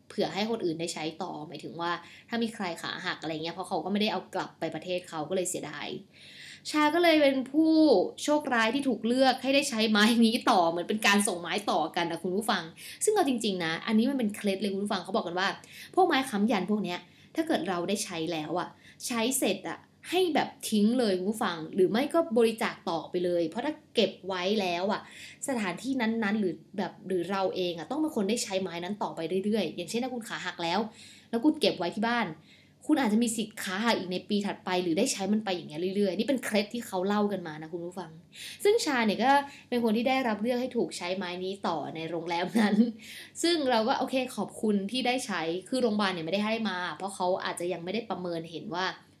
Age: 20-39